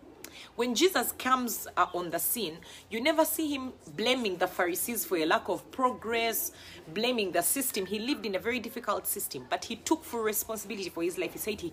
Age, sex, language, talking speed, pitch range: 30-49, female, English, 205 wpm, 200-275 Hz